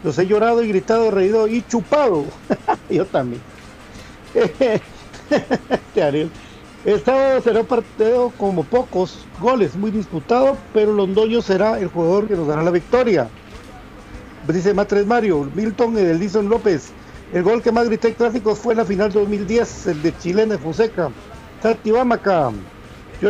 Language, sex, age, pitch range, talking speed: Spanish, male, 50-69, 190-230 Hz, 150 wpm